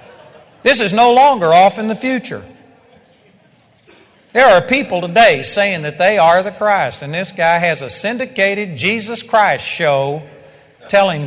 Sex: male